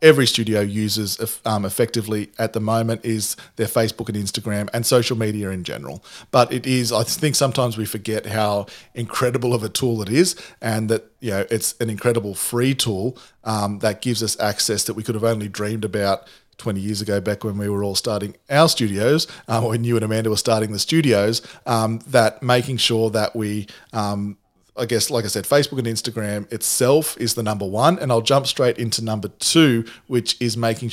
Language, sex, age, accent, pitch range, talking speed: English, male, 40-59, Australian, 105-120 Hz, 200 wpm